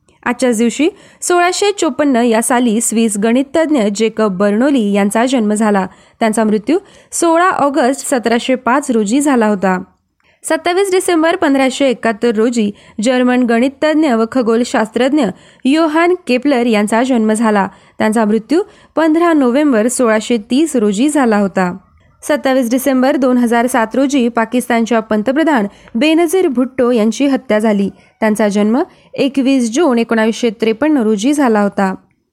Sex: female